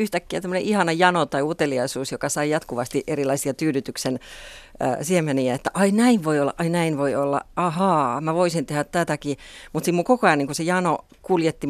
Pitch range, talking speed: 145-195 Hz, 180 wpm